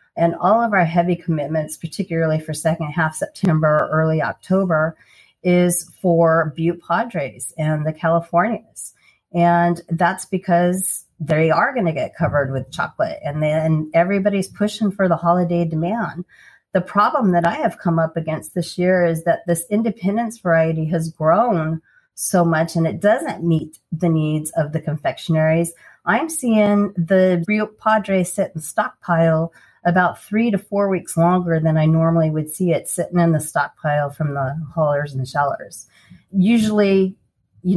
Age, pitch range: 40-59, 160-185 Hz